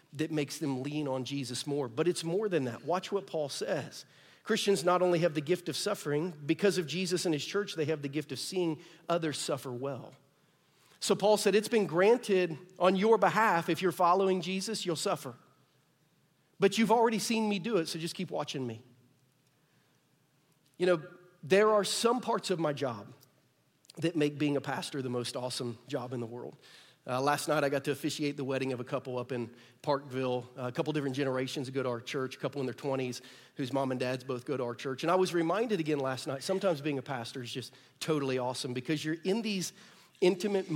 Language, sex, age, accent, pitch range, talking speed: English, male, 40-59, American, 135-175 Hz, 210 wpm